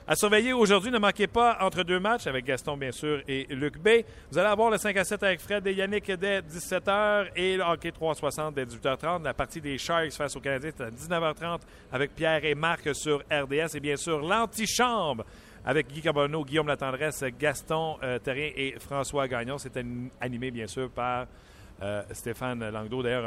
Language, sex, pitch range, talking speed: French, male, 125-175 Hz, 195 wpm